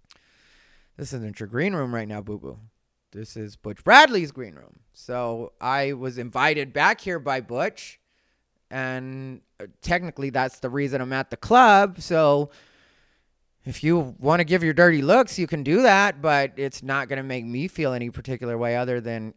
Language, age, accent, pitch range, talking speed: English, 30-49, American, 125-195 Hz, 175 wpm